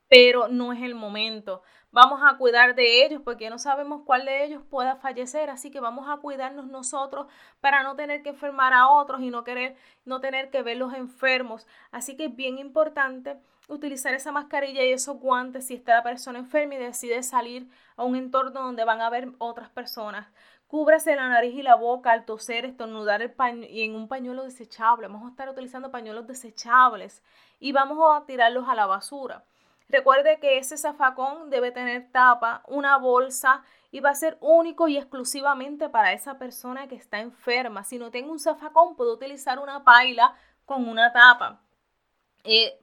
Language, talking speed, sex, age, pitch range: Spanish, 185 wpm, female, 20-39, 235-280 Hz